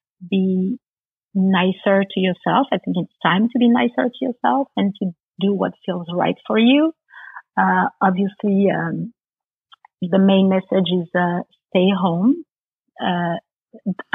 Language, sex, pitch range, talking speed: English, female, 180-205 Hz, 135 wpm